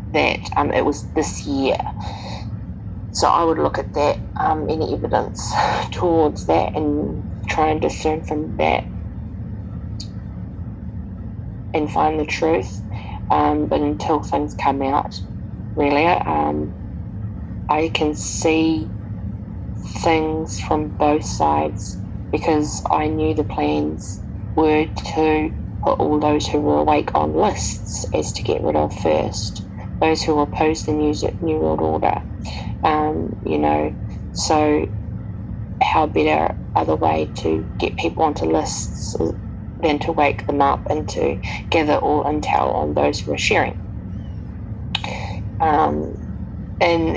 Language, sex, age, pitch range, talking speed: English, female, 30-49, 95-145 Hz, 130 wpm